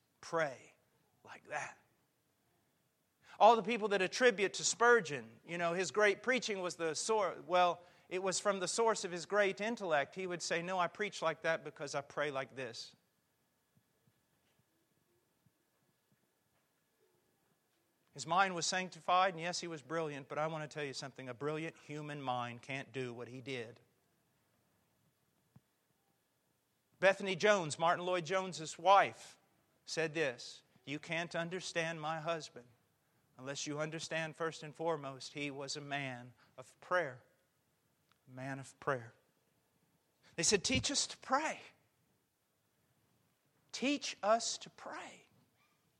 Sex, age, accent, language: male, 50-69, American, English